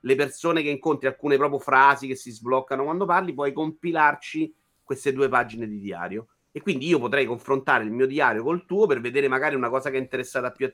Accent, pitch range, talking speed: native, 120-170 Hz, 220 wpm